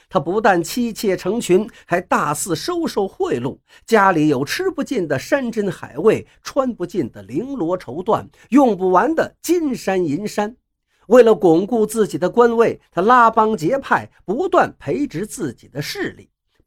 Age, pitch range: 50-69, 175-285 Hz